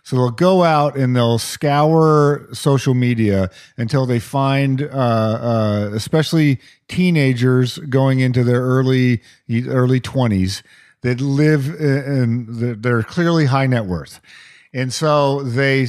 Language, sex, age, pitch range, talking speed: English, male, 40-59, 115-155 Hz, 125 wpm